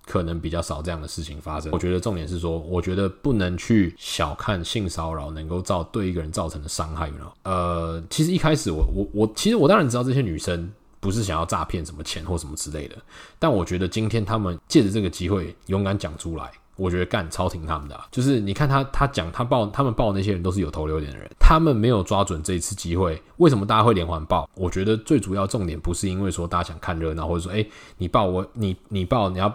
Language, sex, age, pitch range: Chinese, male, 20-39, 85-105 Hz